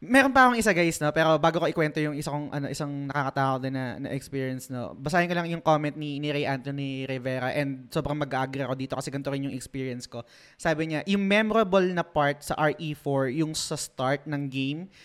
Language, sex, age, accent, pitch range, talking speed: Filipino, male, 20-39, native, 140-170 Hz, 220 wpm